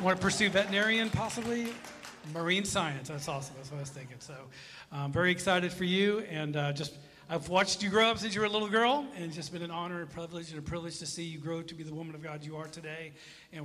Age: 40-59